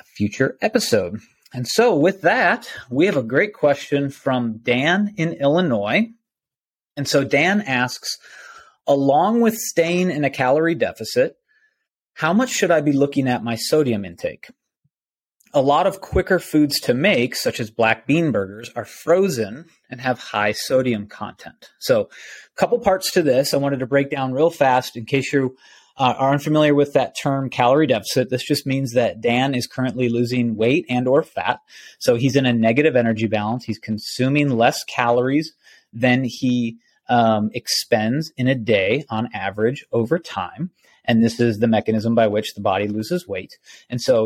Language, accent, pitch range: English, American, 120-150 Hz